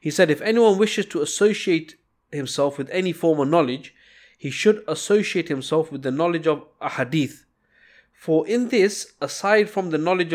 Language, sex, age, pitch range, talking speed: English, male, 20-39, 130-165 Hz, 175 wpm